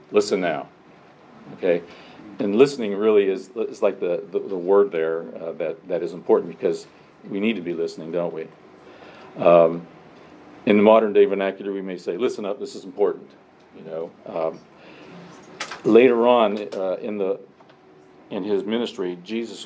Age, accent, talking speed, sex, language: 50-69, American, 160 wpm, male, English